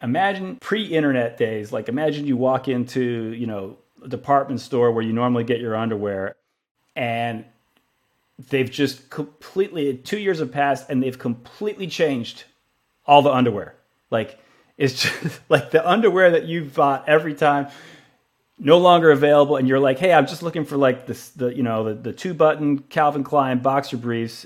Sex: male